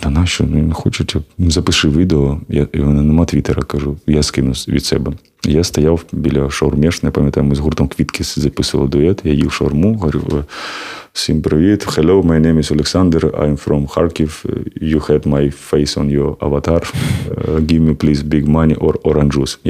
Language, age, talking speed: Ukrainian, 30-49, 175 wpm